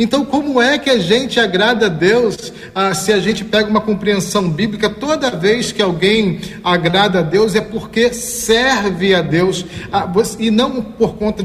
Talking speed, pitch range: 175 wpm, 180-225 Hz